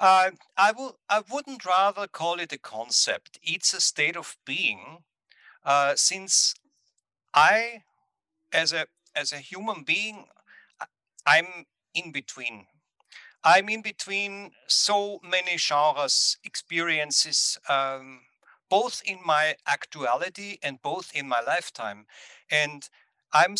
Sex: male